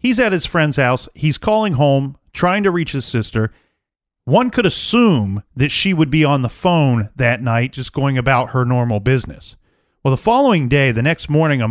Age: 40-59